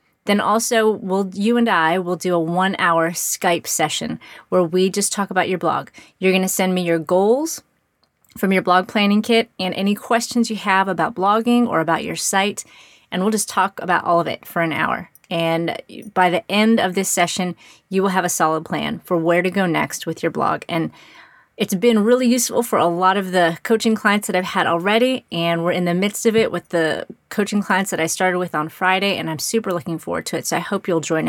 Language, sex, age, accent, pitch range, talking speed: English, female, 30-49, American, 175-220 Hz, 230 wpm